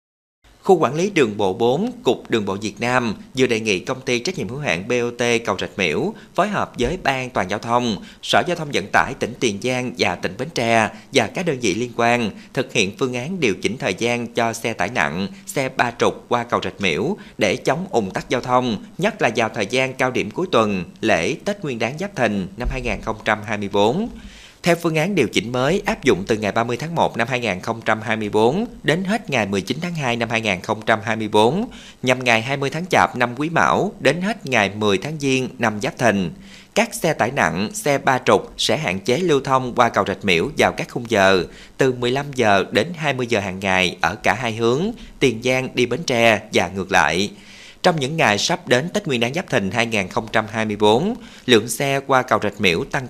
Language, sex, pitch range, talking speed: Vietnamese, male, 110-140 Hz, 215 wpm